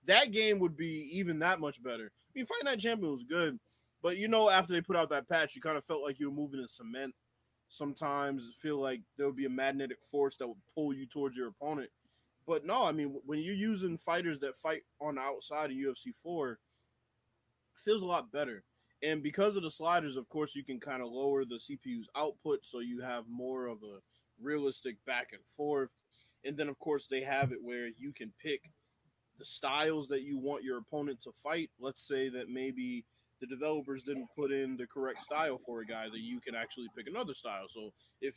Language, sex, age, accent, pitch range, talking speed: English, male, 20-39, American, 125-155 Hz, 220 wpm